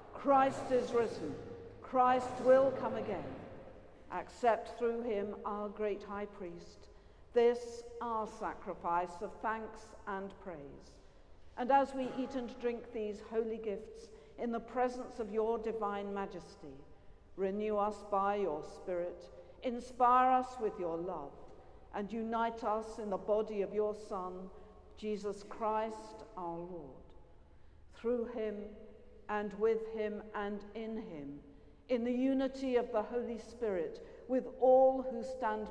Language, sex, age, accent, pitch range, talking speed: English, female, 50-69, British, 205-240 Hz, 135 wpm